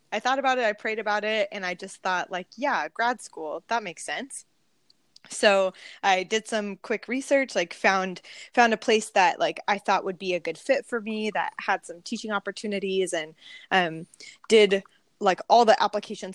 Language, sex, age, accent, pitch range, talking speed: English, female, 20-39, American, 185-220 Hz, 195 wpm